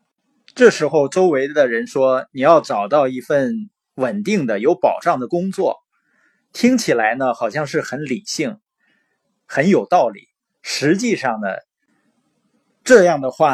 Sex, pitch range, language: male, 145-230 Hz, Chinese